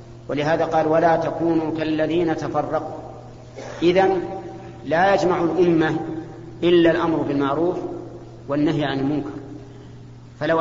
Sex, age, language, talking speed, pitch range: male, 50-69, Arabic, 95 wpm, 135-170 Hz